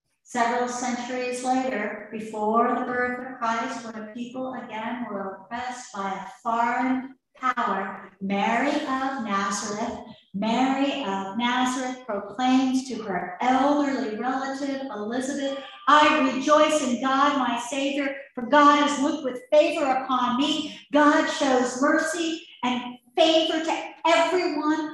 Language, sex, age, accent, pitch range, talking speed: English, female, 50-69, American, 245-305 Hz, 125 wpm